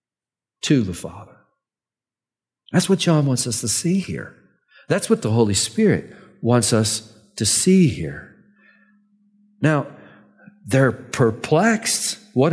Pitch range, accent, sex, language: 120-155 Hz, American, male, English